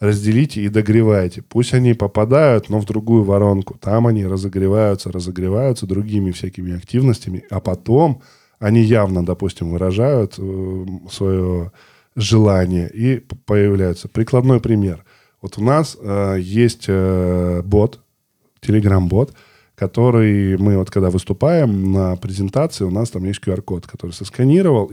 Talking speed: 120 wpm